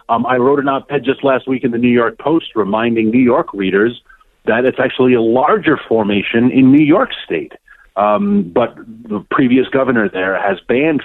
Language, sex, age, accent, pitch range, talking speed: English, male, 40-59, American, 115-190 Hz, 190 wpm